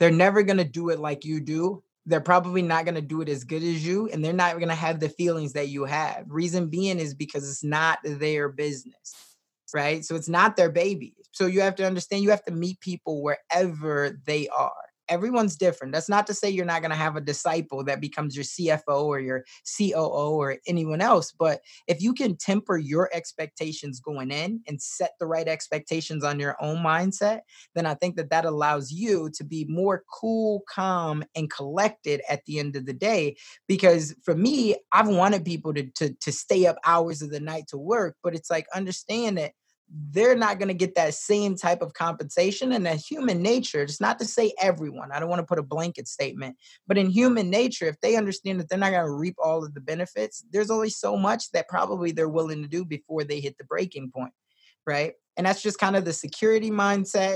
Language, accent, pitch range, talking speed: English, American, 155-195 Hz, 215 wpm